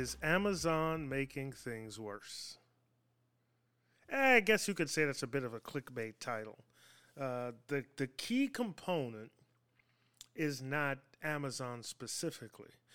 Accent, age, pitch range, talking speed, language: American, 30-49, 125-160 Hz, 125 wpm, English